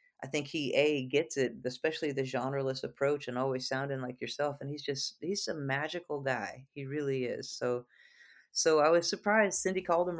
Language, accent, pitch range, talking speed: English, American, 130-160 Hz, 195 wpm